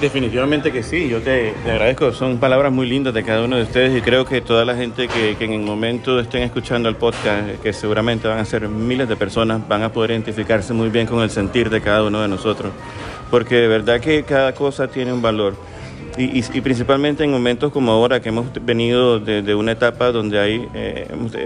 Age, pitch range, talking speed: 30-49, 110-125 Hz, 225 wpm